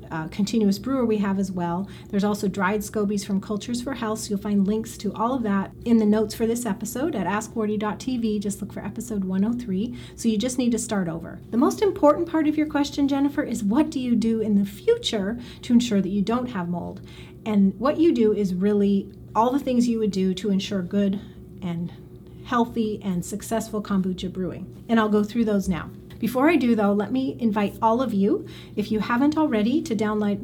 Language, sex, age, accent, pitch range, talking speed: English, female, 30-49, American, 200-240 Hz, 215 wpm